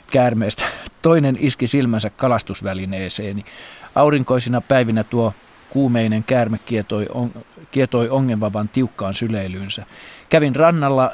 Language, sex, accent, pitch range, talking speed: Finnish, male, native, 100-120 Hz, 85 wpm